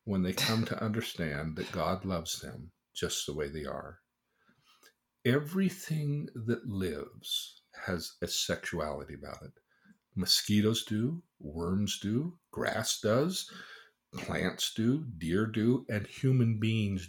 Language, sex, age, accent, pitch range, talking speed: English, male, 50-69, American, 95-125 Hz, 125 wpm